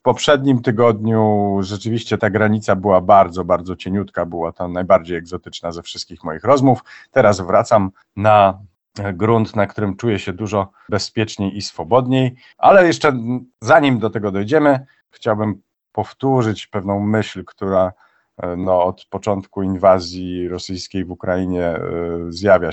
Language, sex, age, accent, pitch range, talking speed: Polish, male, 40-59, native, 90-115 Hz, 125 wpm